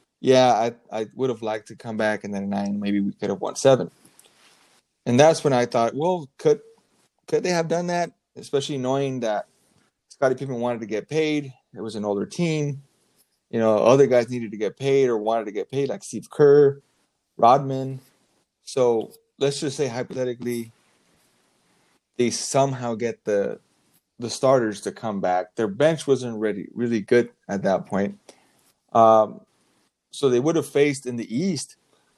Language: English